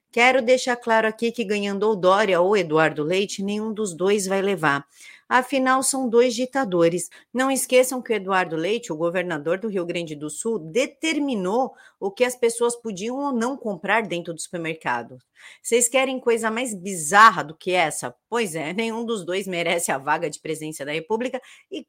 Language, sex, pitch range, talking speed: Portuguese, female, 180-240 Hz, 180 wpm